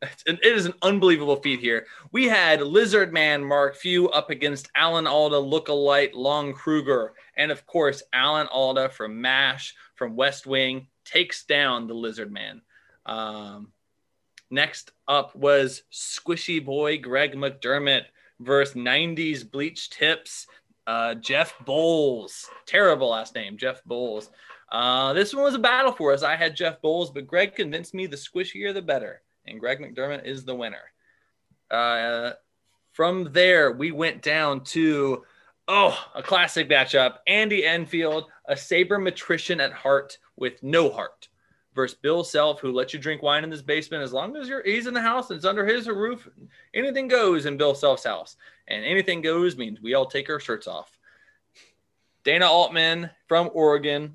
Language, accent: English, American